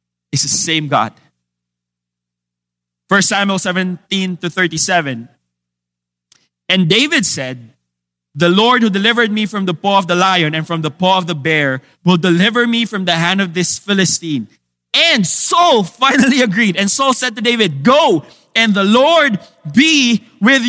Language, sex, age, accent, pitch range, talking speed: English, male, 20-39, Filipino, 170-255 Hz, 155 wpm